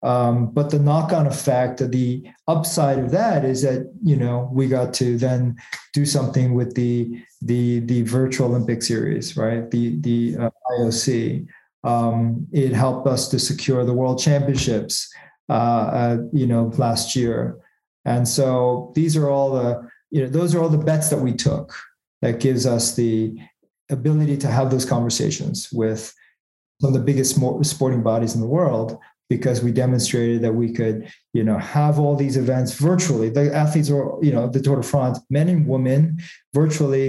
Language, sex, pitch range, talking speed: English, male, 120-150 Hz, 175 wpm